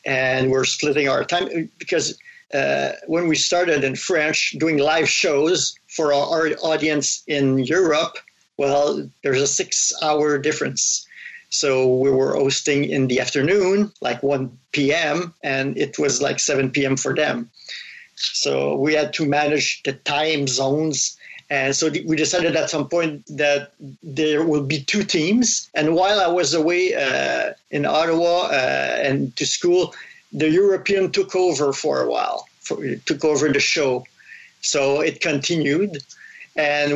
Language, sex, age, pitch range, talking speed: English, male, 50-69, 140-165 Hz, 150 wpm